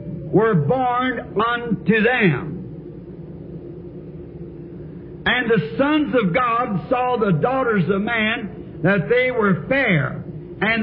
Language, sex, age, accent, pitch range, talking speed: English, male, 60-79, American, 170-235 Hz, 105 wpm